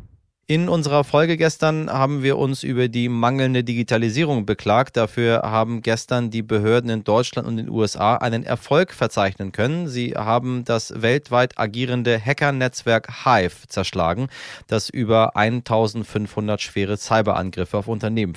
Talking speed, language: 135 wpm, German